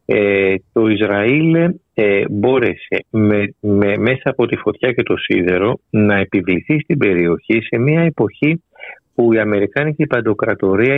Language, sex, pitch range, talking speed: Greek, male, 100-145 Hz, 115 wpm